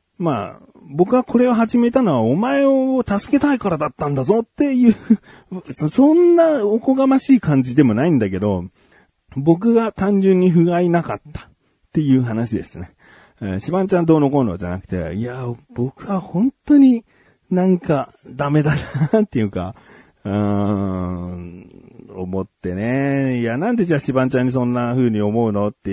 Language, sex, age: Japanese, male, 40-59